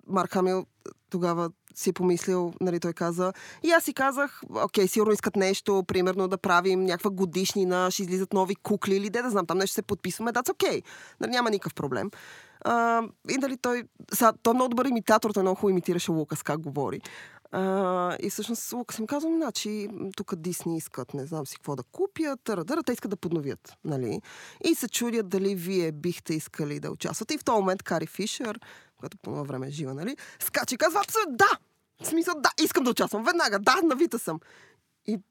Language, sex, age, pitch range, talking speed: Bulgarian, female, 20-39, 180-245 Hz, 200 wpm